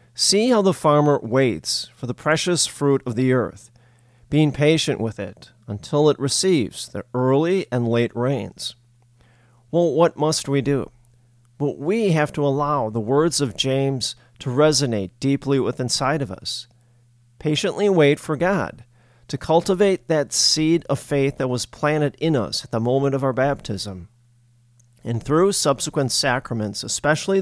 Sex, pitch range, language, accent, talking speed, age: male, 120-150 Hz, English, American, 155 wpm, 40-59